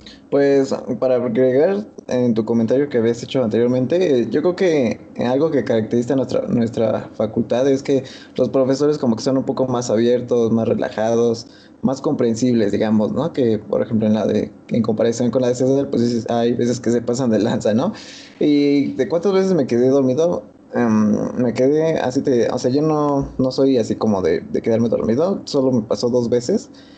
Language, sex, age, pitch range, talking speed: Spanish, male, 20-39, 115-135 Hz, 195 wpm